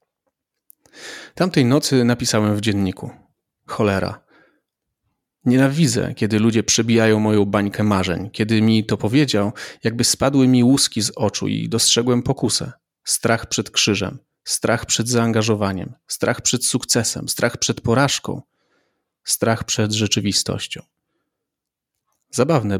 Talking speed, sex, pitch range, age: 110 wpm, male, 105-125 Hz, 30-49